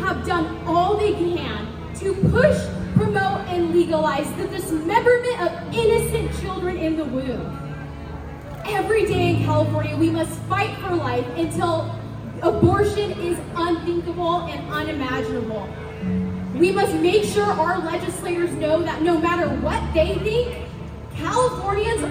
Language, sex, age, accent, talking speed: English, female, 10-29, American, 130 wpm